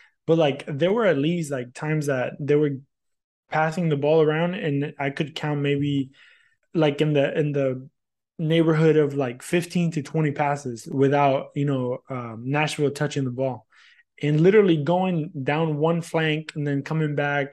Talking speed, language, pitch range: 170 wpm, English, 135-155 Hz